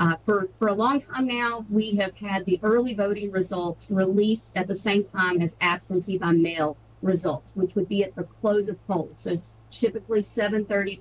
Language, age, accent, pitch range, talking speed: English, 40-59, American, 175-215 Hz, 195 wpm